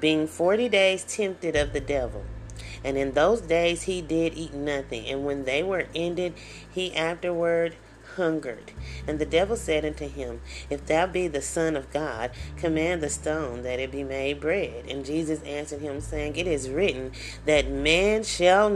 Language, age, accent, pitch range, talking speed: English, 30-49, American, 135-175 Hz, 175 wpm